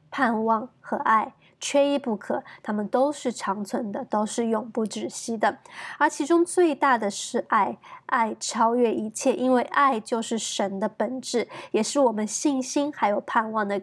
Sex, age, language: female, 20-39, Chinese